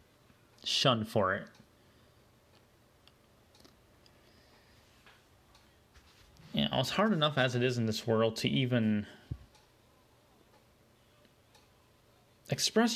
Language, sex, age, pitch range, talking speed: English, male, 20-39, 115-130 Hz, 75 wpm